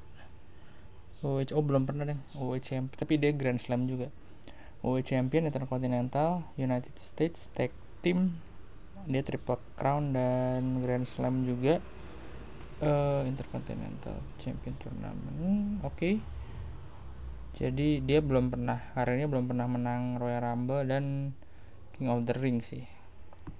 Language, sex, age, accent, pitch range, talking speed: Indonesian, male, 20-39, native, 120-135 Hz, 125 wpm